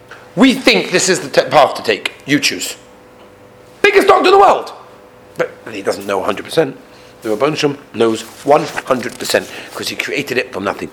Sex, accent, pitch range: male, British, 135-205 Hz